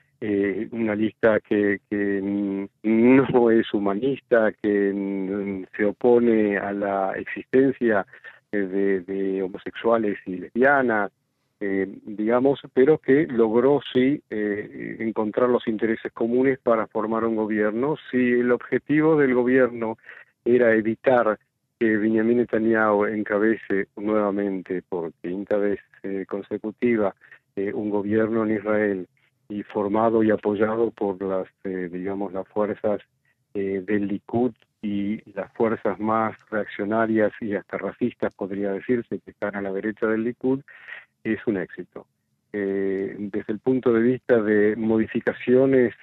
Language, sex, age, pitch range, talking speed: Spanish, male, 50-69, 100-115 Hz, 125 wpm